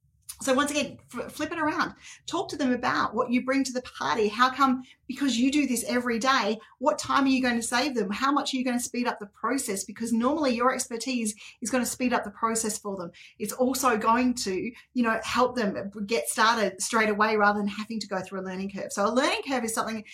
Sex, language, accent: female, English, Australian